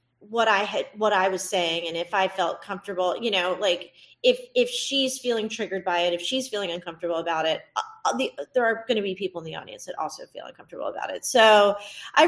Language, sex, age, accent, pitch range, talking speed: English, female, 30-49, American, 175-240 Hz, 230 wpm